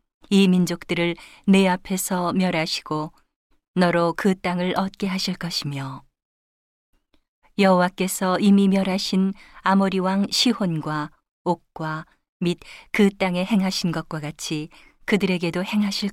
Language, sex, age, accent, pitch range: Korean, female, 40-59, native, 160-195 Hz